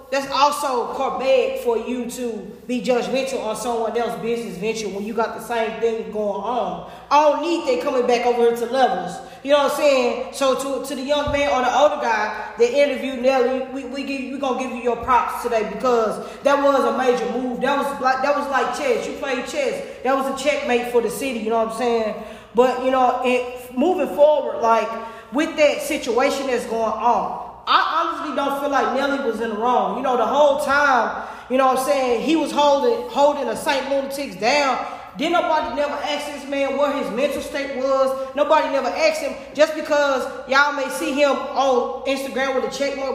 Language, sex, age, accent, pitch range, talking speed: English, female, 20-39, American, 245-285 Hz, 215 wpm